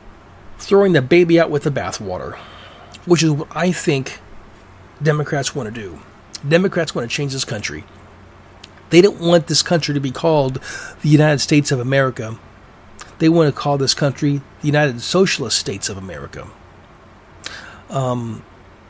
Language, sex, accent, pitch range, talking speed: English, male, American, 115-155 Hz, 150 wpm